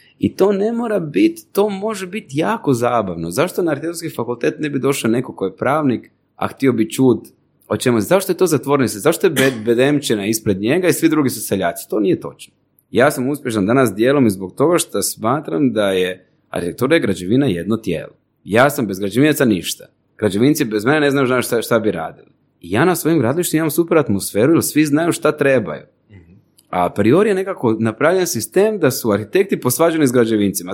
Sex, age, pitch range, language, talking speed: male, 30-49, 110-155 Hz, Croatian, 195 wpm